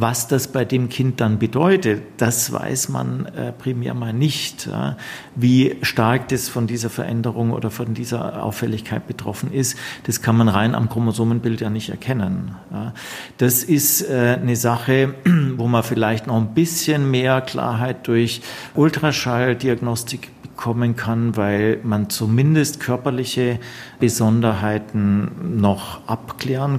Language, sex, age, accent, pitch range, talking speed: German, male, 50-69, German, 110-125 Hz, 130 wpm